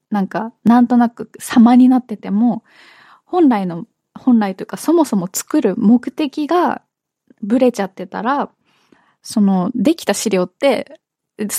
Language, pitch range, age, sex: Japanese, 200-255 Hz, 20-39, female